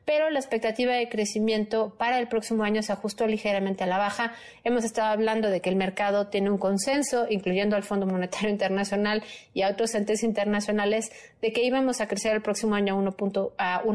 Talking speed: 190 wpm